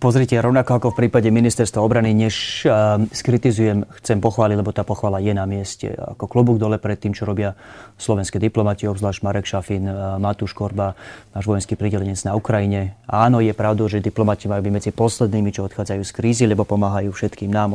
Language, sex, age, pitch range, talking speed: Slovak, male, 30-49, 100-120 Hz, 185 wpm